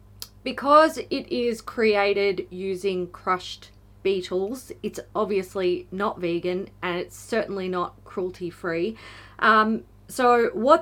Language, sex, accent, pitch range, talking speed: English, female, Australian, 175-220 Hz, 100 wpm